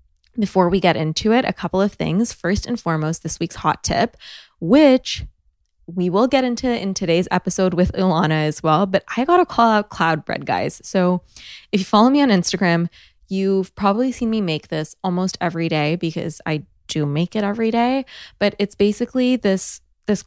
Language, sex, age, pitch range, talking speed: English, female, 20-39, 170-205 Hz, 190 wpm